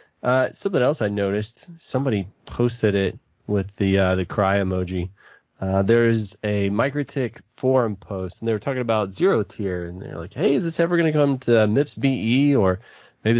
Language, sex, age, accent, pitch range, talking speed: English, male, 20-39, American, 95-120 Hz, 195 wpm